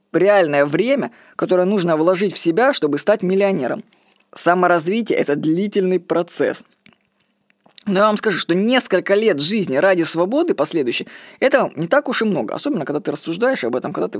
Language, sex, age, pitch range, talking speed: Russian, female, 20-39, 165-225 Hz, 165 wpm